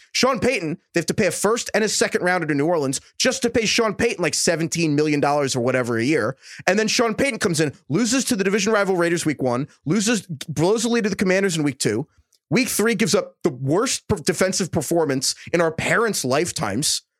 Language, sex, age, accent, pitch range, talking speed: English, male, 30-49, American, 160-235 Hz, 225 wpm